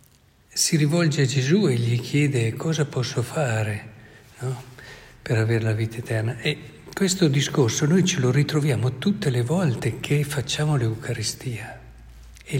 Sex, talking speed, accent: male, 140 wpm, native